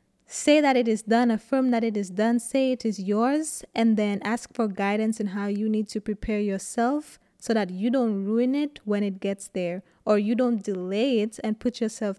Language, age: English, 20-39